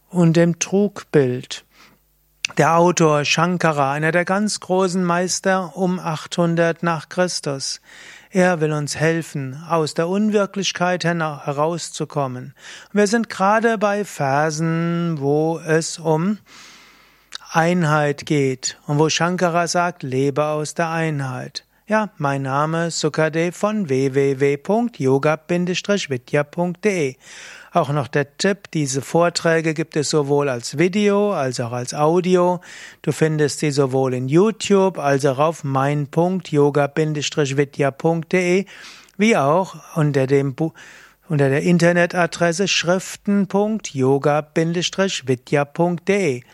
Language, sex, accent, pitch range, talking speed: German, male, German, 145-180 Hz, 105 wpm